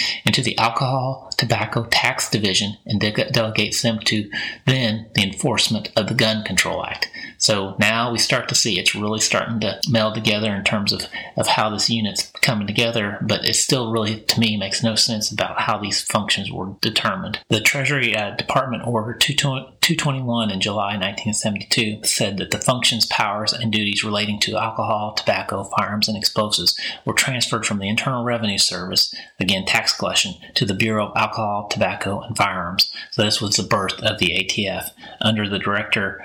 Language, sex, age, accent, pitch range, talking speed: English, male, 30-49, American, 105-125 Hz, 175 wpm